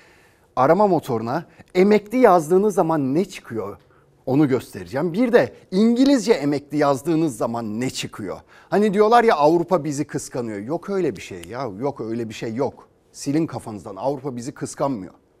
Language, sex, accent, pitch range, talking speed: Turkish, male, native, 140-195 Hz, 150 wpm